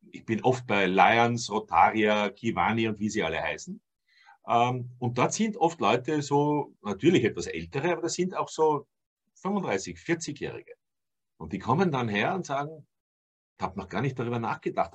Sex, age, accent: male, 50-69, German